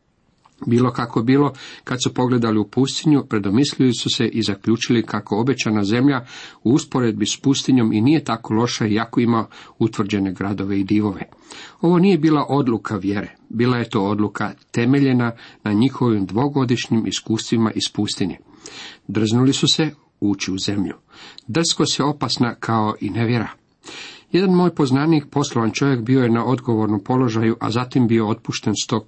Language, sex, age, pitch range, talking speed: Croatian, male, 50-69, 110-135 Hz, 155 wpm